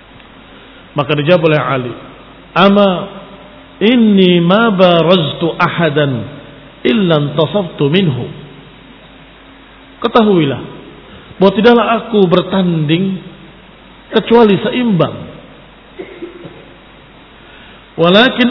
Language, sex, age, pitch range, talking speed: Indonesian, male, 50-69, 150-200 Hz, 50 wpm